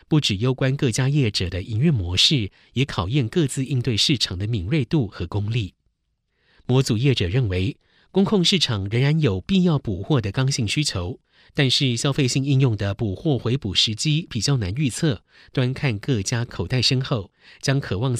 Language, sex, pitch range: Chinese, male, 105-145 Hz